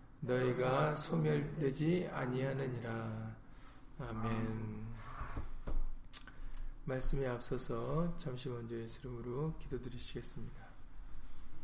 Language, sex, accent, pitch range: Korean, male, native, 115-135 Hz